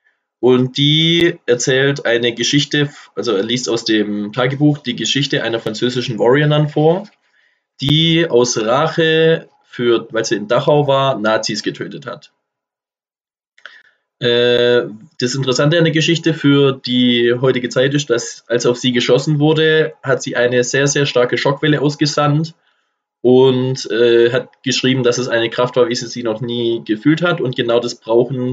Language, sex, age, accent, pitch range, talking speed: German, male, 20-39, German, 115-150 Hz, 150 wpm